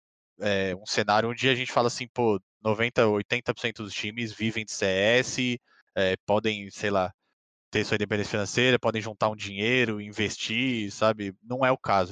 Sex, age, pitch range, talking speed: male, 20-39, 100-125 Hz, 175 wpm